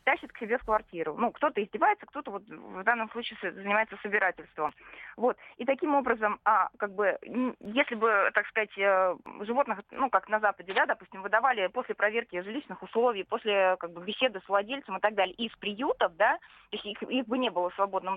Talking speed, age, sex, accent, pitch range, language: 190 wpm, 20-39, female, native, 195-240 Hz, Russian